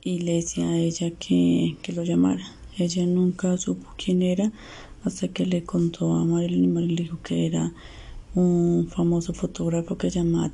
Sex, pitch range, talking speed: female, 105-170 Hz, 175 wpm